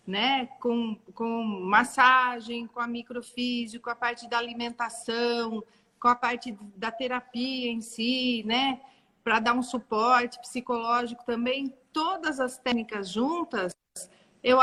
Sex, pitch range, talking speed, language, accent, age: female, 225-255 Hz, 125 wpm, Portuguese, Brazilian, 40-59